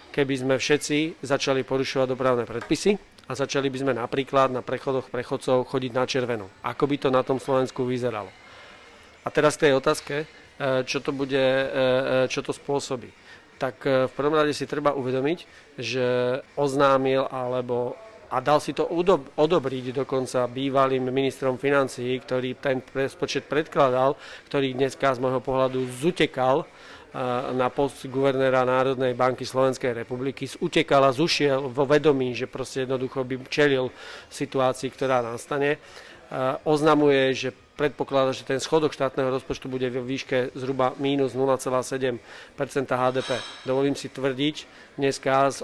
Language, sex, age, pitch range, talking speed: Slovak, male, 40-59, 130-140 Hz, 140 wpm